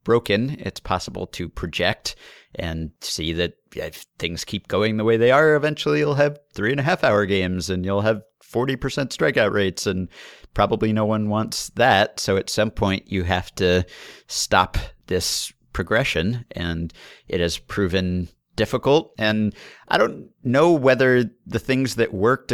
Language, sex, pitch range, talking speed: English, male, 90-110 Hz, 160 wpm